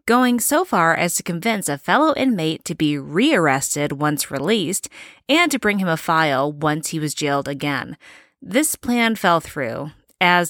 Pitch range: 155-230 Hz